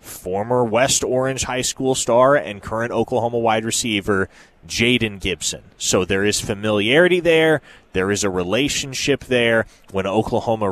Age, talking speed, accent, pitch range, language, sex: 20-39, 140 wpm, American, 105-135 Hz, English, male